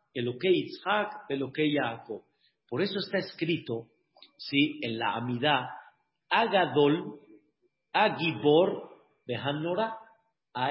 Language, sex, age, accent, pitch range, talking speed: Spanish, male, 50-69, Mexican, 155-205 Hz, 90 wpm